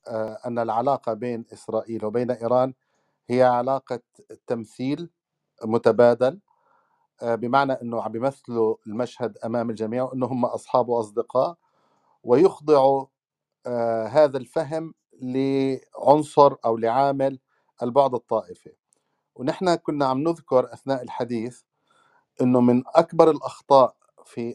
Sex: male